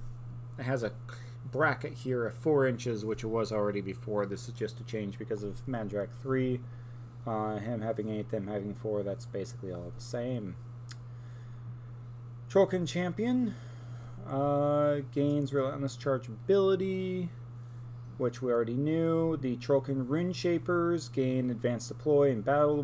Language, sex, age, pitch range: English, male, 30-49, 120-135 Hz